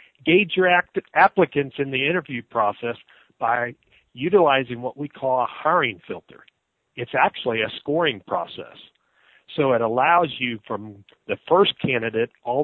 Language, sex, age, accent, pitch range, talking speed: English, male, 50-69, American, 120-160 Hz, 140 wpm